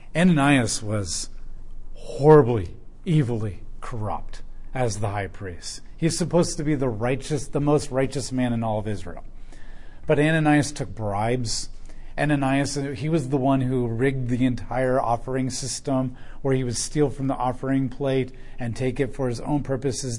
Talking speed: 160 wpm